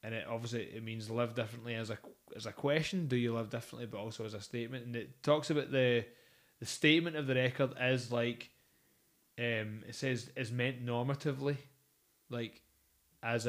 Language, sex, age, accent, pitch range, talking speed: English, male, 20-39, British, 110-135 Hz, 180 wpm